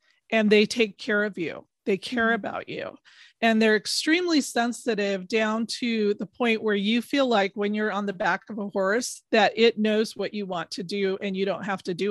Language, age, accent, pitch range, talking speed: English, 30-49, American, 195-235 Hz, 220 wpm